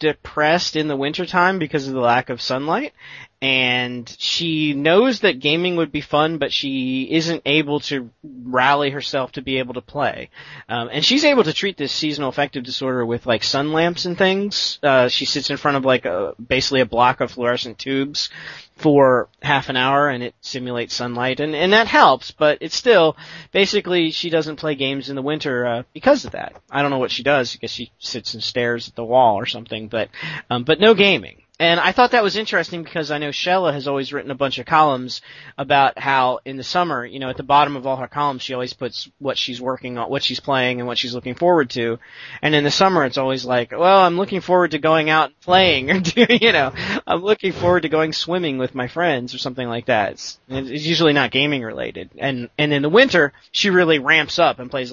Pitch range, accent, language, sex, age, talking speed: 125-165 Hz, American, English, male, 30-49, 225 wpm